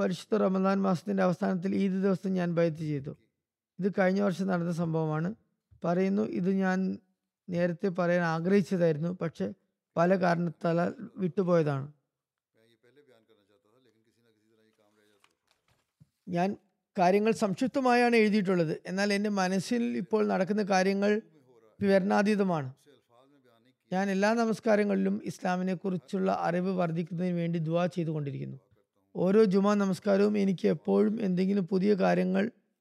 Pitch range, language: 155-200 Hz, Malayalam